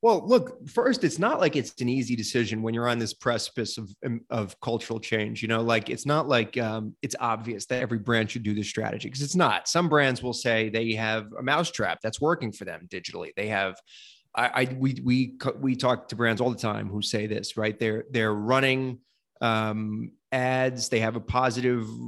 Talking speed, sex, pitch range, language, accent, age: 210 wpm, male, 110-130 Hz, English, American, 30-49